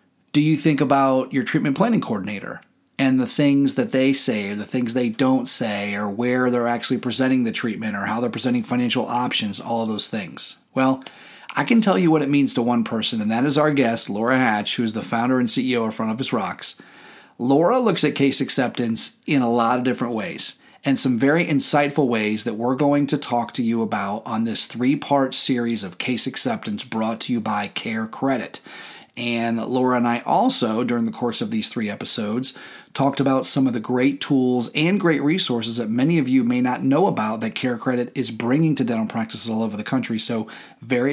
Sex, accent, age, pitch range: male, American, 30-49, 120-145 Hz